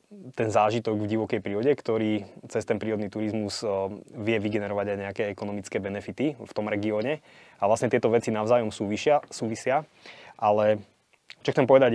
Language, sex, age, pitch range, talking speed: Slovak, male, 20-39, 100-110 Hz, 150 wpm